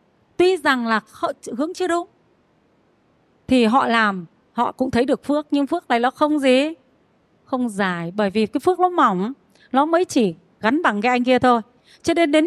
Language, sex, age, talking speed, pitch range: Vietnamese, female, 30-49, 190 wpm, 215-285 Hz